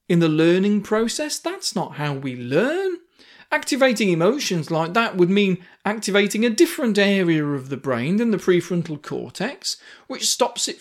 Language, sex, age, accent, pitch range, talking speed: English, male, 40-59, British, 165-235 Hz, 160 wpm